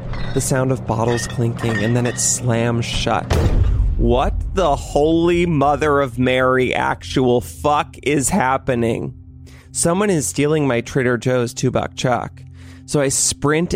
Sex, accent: male, American